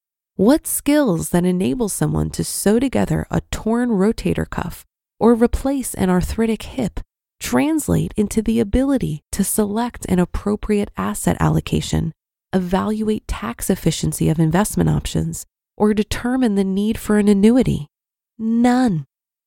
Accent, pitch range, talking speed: American, 175-230 Hz, 125 wpm